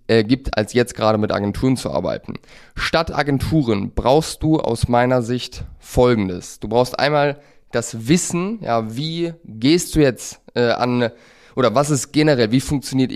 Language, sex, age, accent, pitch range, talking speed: German, male, 20-39, German, 115-145 Hz, 155 wpm